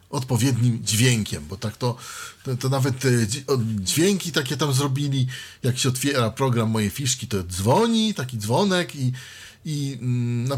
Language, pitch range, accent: Polish, 110-135 Hz, native